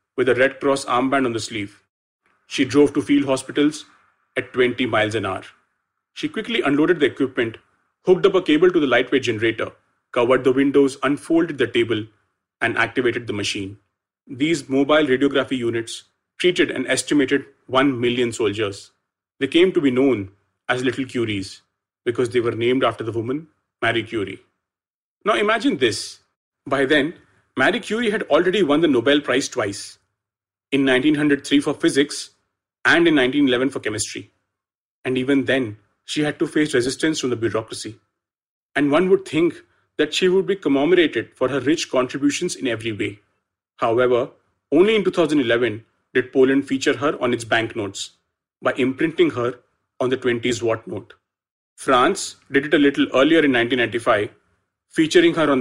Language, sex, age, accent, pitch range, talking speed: English, male, 30-49, Indian, 115-185 Hz, 160 wpm